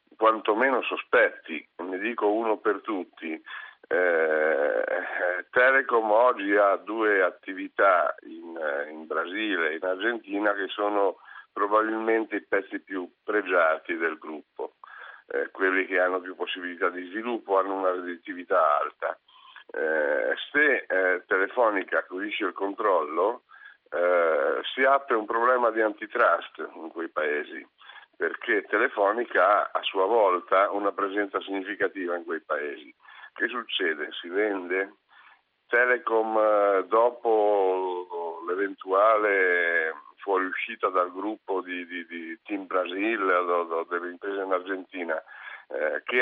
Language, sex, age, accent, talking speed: Italian, male, 50-69, native, 115 wpm